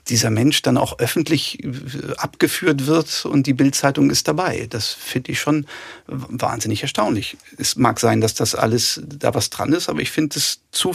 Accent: German